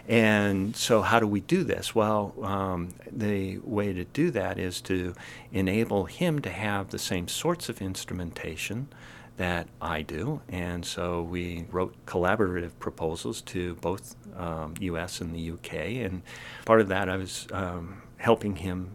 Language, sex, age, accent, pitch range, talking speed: English, male, 50-69, American, 90-110 Hz, 160 wpm